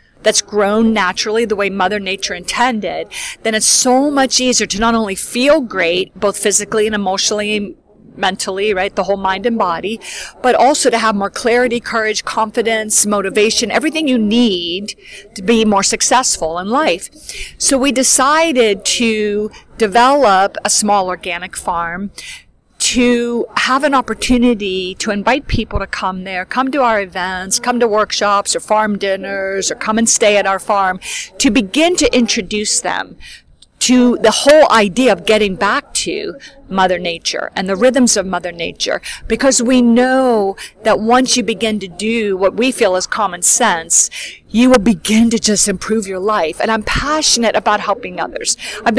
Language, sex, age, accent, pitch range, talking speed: English, female, 50-69, American, 200-245 Hz, 165 wpm